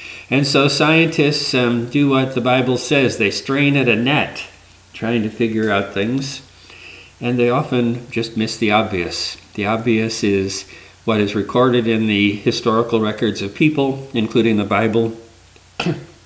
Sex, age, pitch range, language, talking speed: male, 50-69, 100-130 Hz, English, 150 wpm